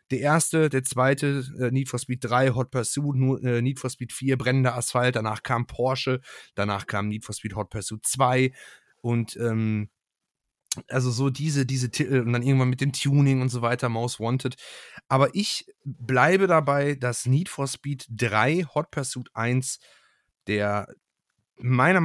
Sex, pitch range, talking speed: male, 105-130 Hz, 160 wpm